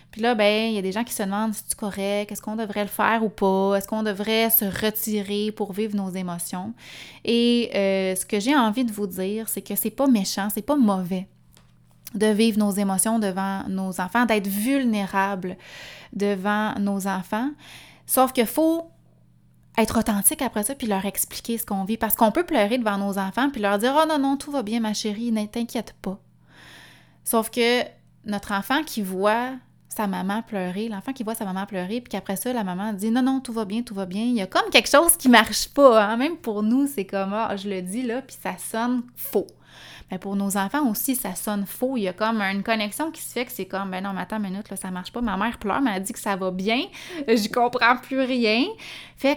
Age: 20-39